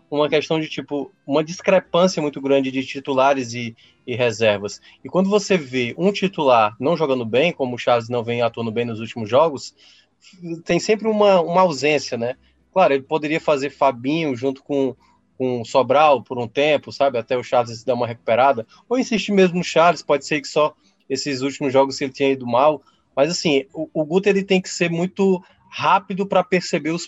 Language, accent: Portuguese, Brazilian